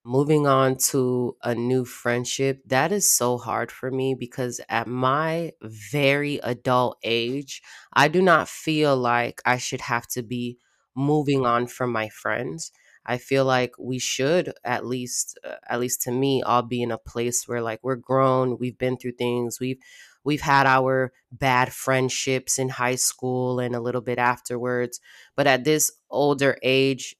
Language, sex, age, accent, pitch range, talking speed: English, female, 20-39, American, 125-140 Hz, 170 wpm